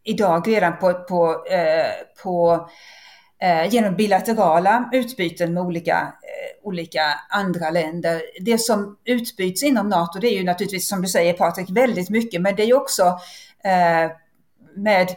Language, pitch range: Swedish, 175-225 Hz